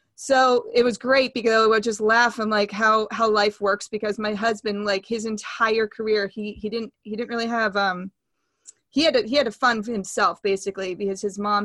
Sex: female